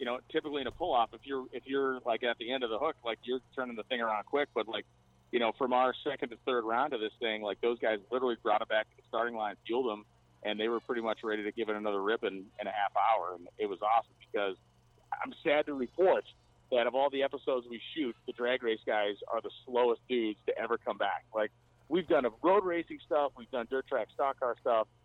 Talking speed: 260 wpm